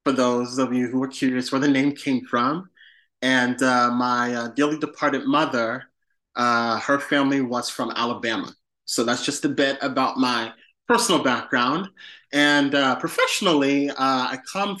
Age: 20-39